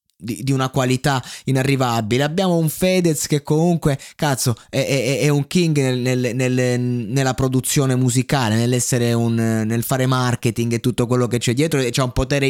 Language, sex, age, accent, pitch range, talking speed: Italian, male, 20-39, native, 115-145 Hz, 175 wpm